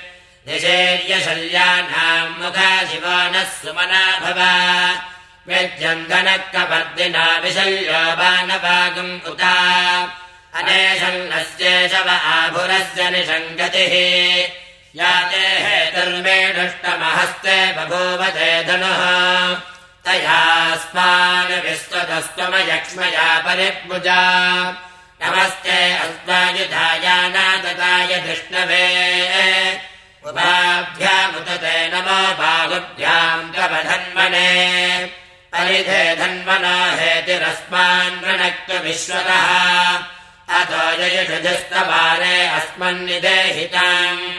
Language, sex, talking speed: English, male, 40 wpm